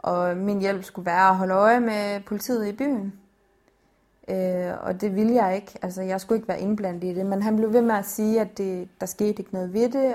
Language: Danish